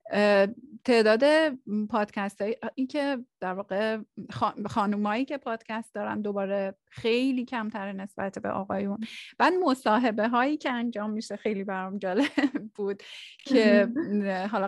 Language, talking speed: Persian, 115 wpm